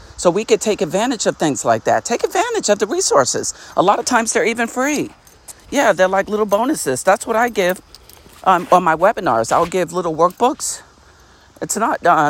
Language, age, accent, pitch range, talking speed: English, 50-69, American, 175-220 Hz, 200 wpm